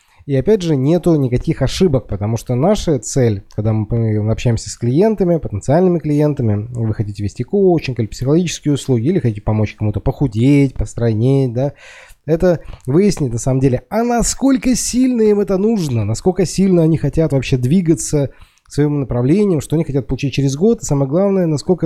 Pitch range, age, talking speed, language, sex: 120-170 Hz, 20-39, 165 wpm, Russian, male